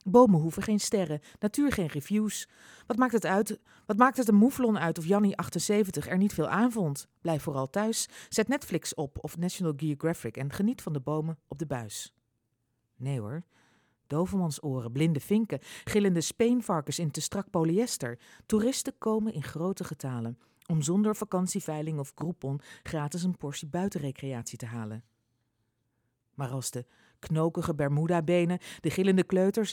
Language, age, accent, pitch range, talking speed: Dutch, 40-59, Dutch, 135-195 Hz, 155 wpm